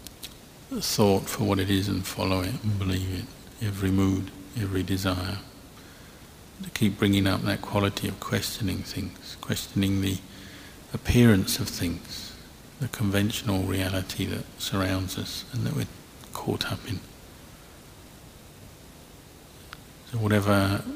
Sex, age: male, 50-69